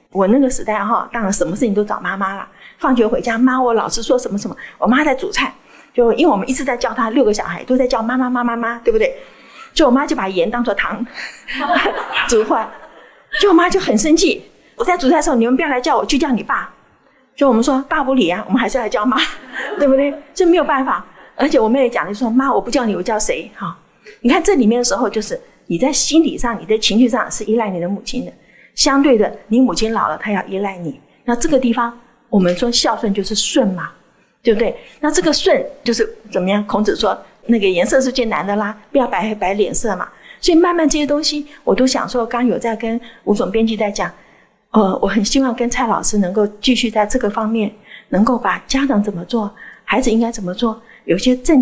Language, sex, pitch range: Chinese, female, 215-275 Hz